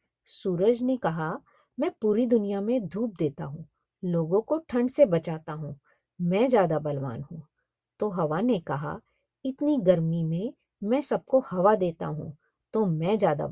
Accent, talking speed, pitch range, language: native, 155 wpm, 165-260 Hz, Hindi